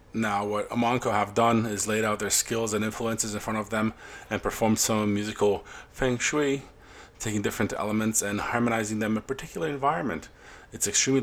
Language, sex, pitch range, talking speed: English, male, 95-115 Hz, 180 wpm